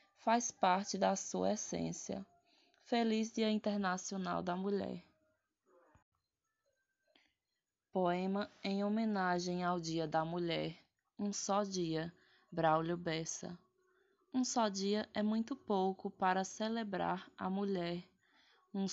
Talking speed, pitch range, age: 105 wpm, 180-220 Hz, 20-39